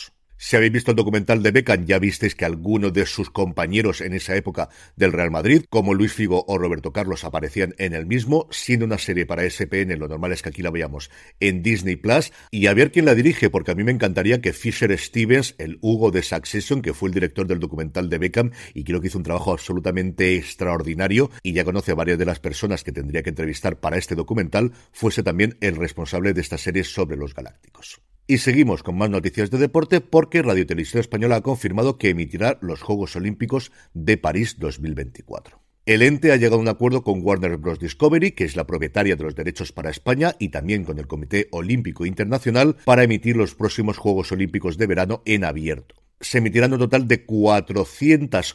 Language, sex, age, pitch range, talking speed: Spanish, male, 50-69, 90-115 Hz, 210 wpm